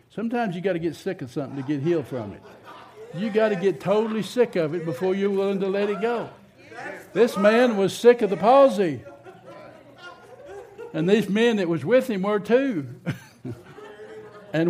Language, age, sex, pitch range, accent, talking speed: English, 60-79, male, 155-195 Hz, American, 185 wpm